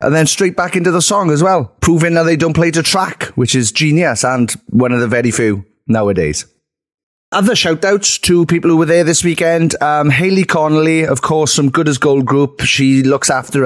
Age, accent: 30-49, British